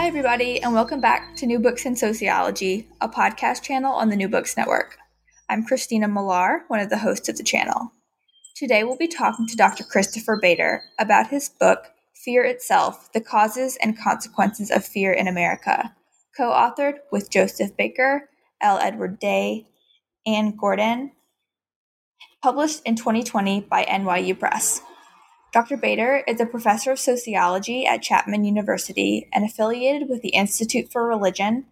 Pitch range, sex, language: 195-250 Hz, female, English